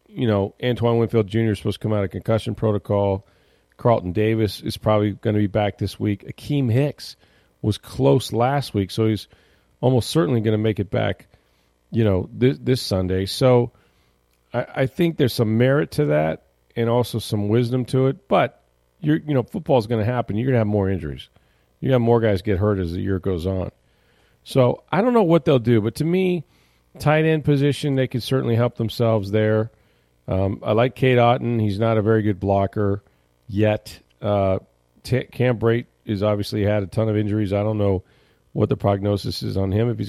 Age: 40-59